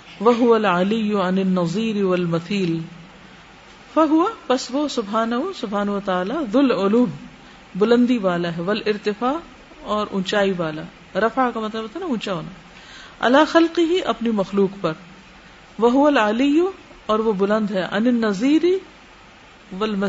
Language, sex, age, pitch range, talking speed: Urdu, female, 50-69, 180-230 Hz, 85 wpm